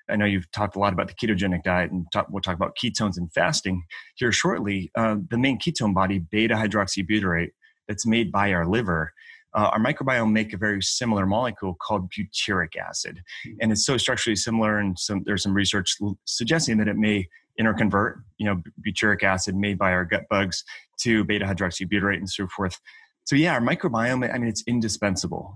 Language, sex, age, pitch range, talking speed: English, male, 30-49, 95-110 Hz, 190 wpm